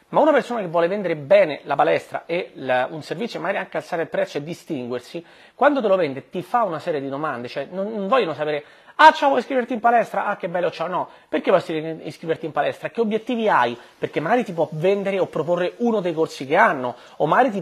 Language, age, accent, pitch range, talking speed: Italian, 30-49, native, 155-205 Hz, 235 wpm